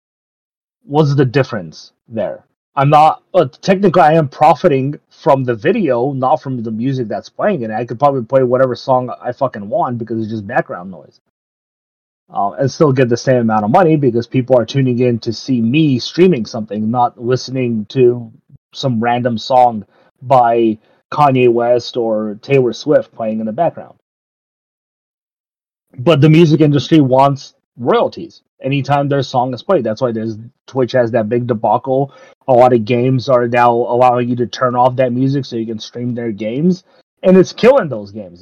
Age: 30-49